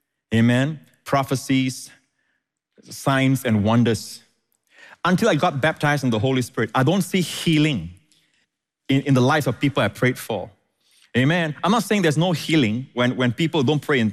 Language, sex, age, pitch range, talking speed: English, male, 30-49, 130-165 Hz, 165 wpm